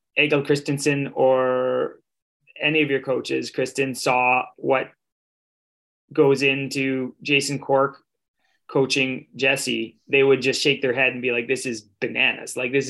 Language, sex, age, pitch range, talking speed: English, male, 20-39, 125-145 Hz, 140 wpm